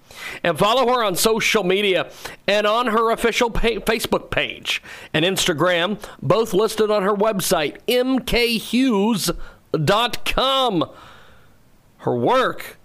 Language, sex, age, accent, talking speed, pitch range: English, male, 40-59, American, 105 wpm, 170-230 Hz